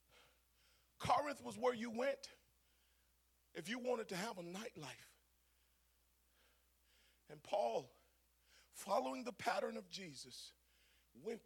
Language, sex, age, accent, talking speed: English, male, 40-59, American, 105 wpm